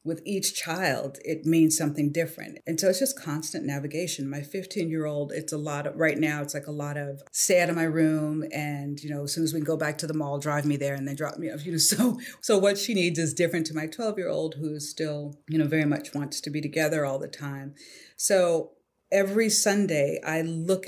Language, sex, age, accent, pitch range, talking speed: English, female, 40-59, American, 145-170 Hz, 235 wpm